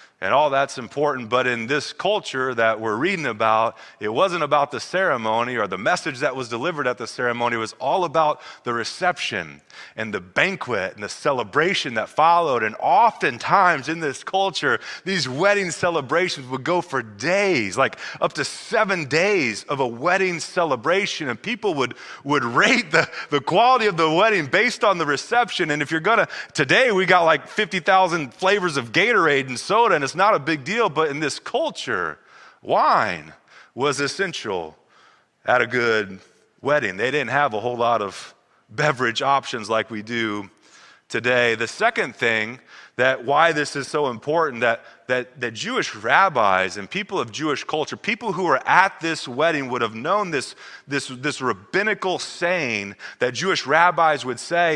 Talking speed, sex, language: 170 wpm, male, English